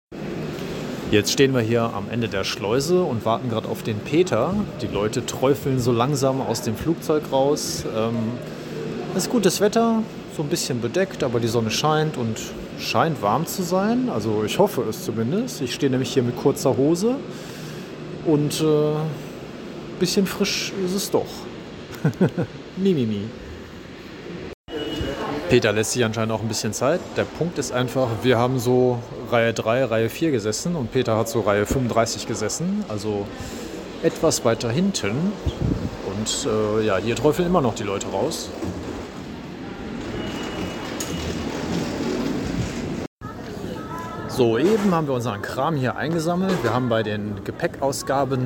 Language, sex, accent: German, male, German